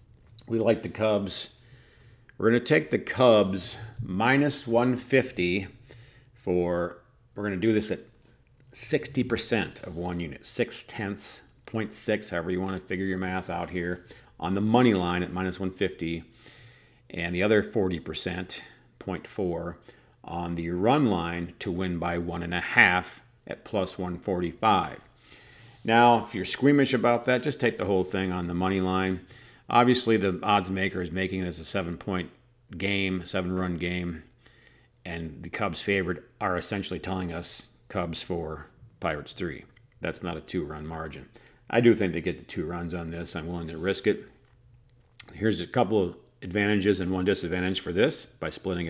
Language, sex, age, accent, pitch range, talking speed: English, male, 50-69, American, 90-115 Hz, 155 wpm